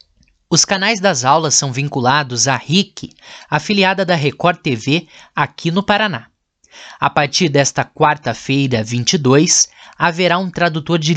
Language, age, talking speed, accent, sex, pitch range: Portuguese, 20-39, 130 wpm, Brazilian, male, 140-185 Hz